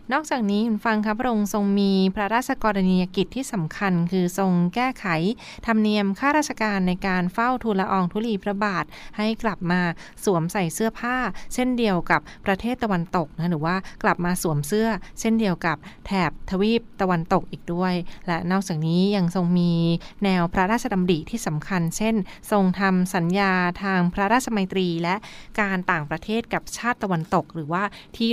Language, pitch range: Thai, 175-210 Hz